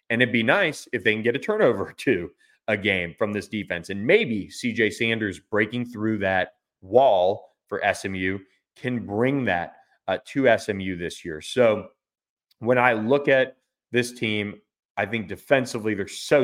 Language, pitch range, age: English, 95-120 Hz, 30-49